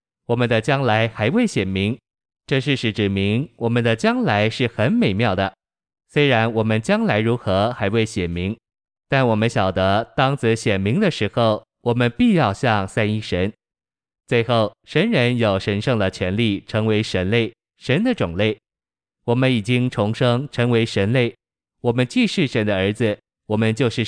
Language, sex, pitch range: Chinese, male, 105-125 Hz